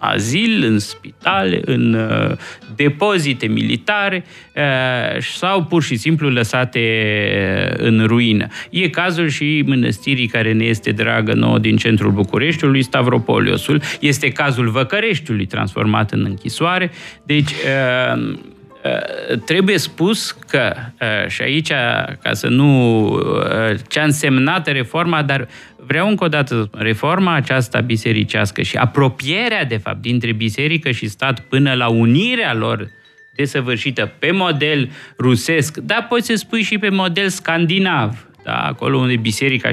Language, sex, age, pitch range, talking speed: Romanian, male, 30-49, 115-160 Hz, 130 wpm